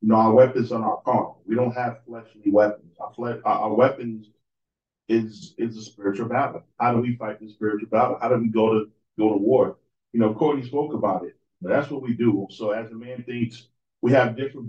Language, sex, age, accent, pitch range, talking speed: English, male, 40-59, American, 110-125 Hz, 235 wpm